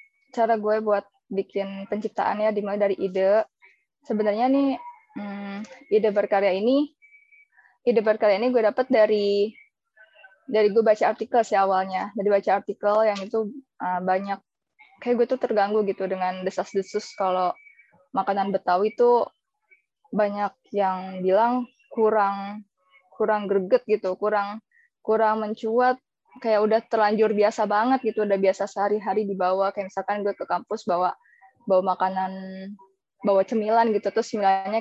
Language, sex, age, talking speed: Indonesian, female, 20-39, 135 wpm